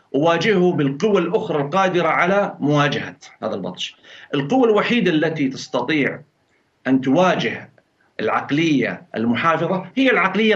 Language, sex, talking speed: Arabic, male, 100 wpm